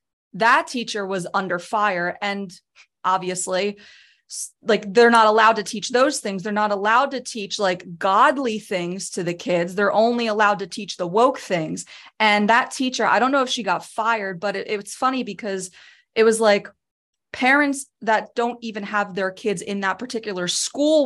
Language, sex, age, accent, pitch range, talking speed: English, female, 20-39, American, 185-230 Hz, 175 wpm